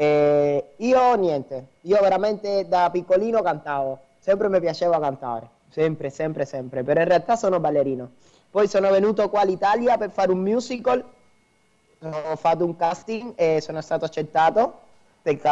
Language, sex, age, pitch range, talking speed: Italian, male, 20-39, 140-170 Hz, 145 wpm